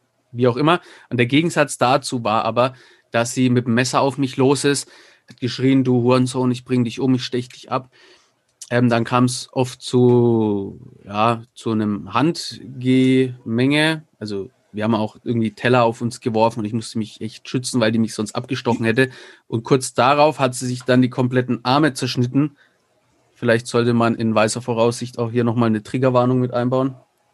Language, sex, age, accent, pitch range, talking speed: German, male, 30-49, German, 120-135 Hz, 185 wpm